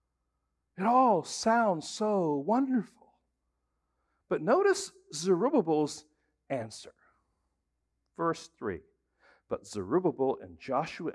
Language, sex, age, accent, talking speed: English, male, 60-79, American, 80 wpm